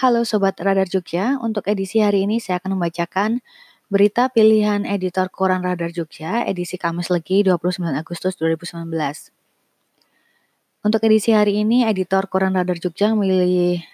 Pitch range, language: 175-205 Hz, Indonesian